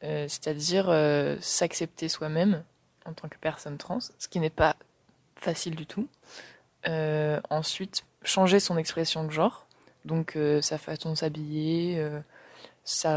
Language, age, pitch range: French, 20-39, 155-180 Hz